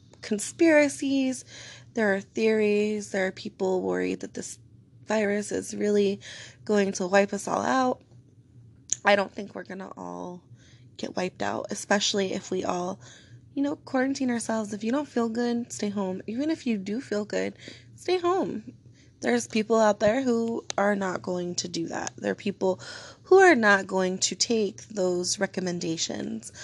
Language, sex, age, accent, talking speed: English, female, 20-39, American, 165 wpm